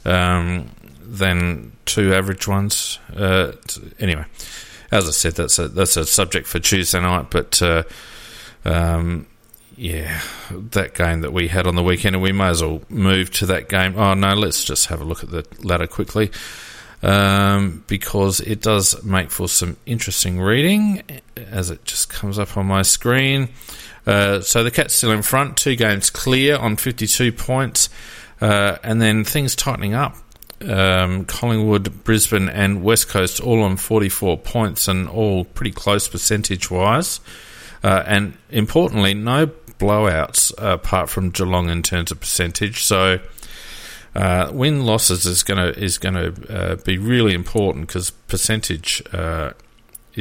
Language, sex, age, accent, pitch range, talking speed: English, male, 40-59, Australian, 90-110 Hz, 155 wpm